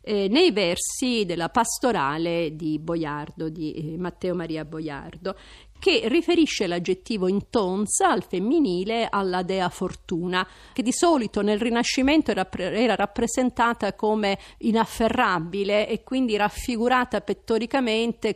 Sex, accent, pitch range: female, native, 185-240 Hz